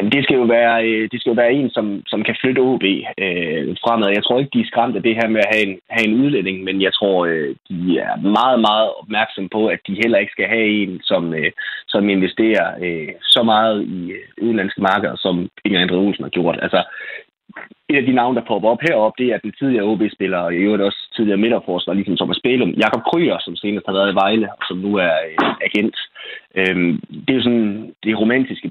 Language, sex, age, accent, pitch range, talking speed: Danish, male, 20-39, native, 95-115 Hz, 220 wpm